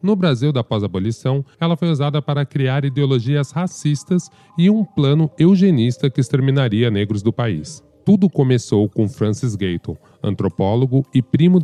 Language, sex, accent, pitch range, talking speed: Portuguese, male, Brazilian, 120-165 Hz, 145 wpm